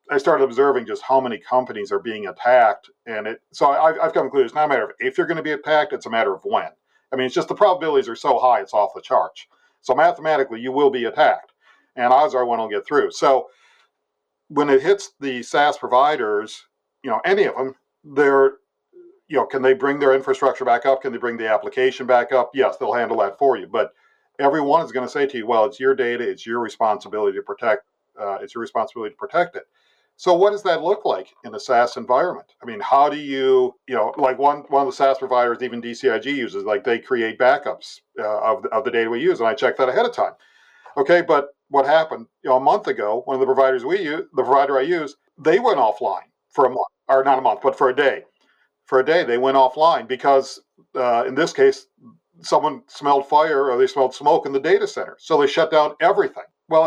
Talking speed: 235 wpm